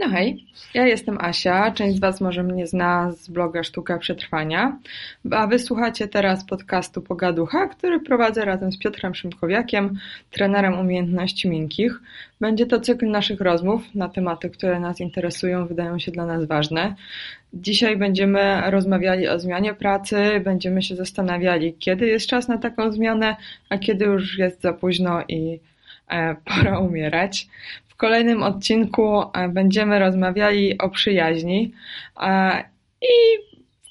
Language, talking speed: Polish, 135 wpm